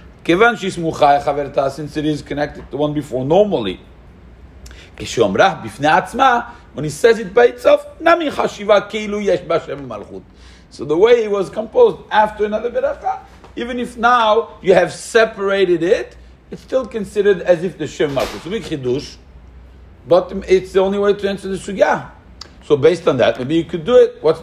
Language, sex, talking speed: English, male, 140 wpm